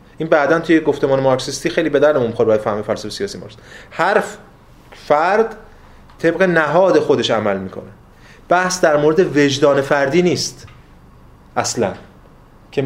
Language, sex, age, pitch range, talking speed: Persian, male, 30-49, 135-180 Hz, 135 wpm